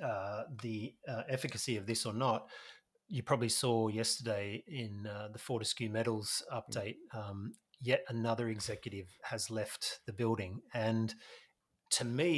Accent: Australian